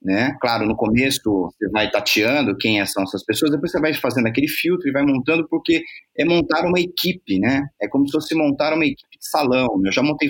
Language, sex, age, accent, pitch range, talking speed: Portuguese, male, 30-49, Brazilian, 130-175 Hz, 225 wpm